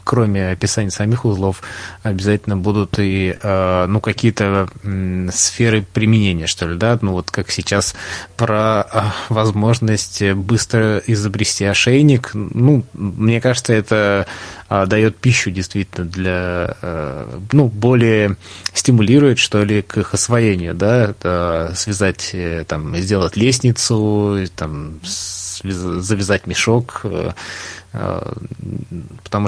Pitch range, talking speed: 95-110 Hz, 100 wpm